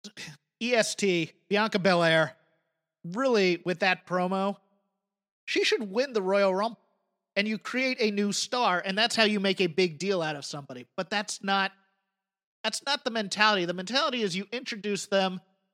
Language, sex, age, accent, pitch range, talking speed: English, male, 30-49, American, 185-215 Hz, 160 wpm